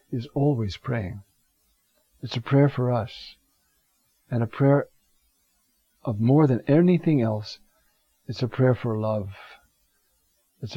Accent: American